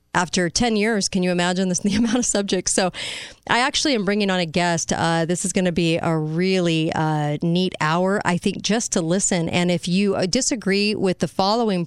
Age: 40-59